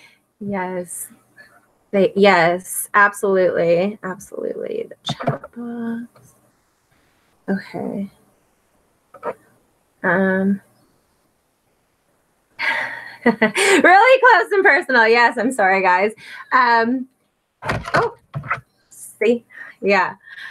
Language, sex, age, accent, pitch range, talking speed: English, female, 20-39, American, 180-235 Hz, 65 wpm